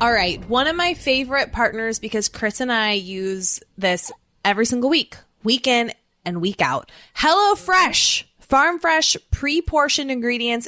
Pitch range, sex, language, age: 195-255 Hz, female, English, 20-39